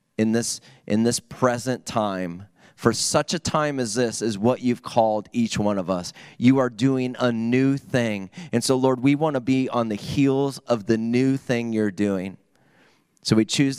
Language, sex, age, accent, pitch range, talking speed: English, male, 30-49, American, 120-160 Hz, 195 wpm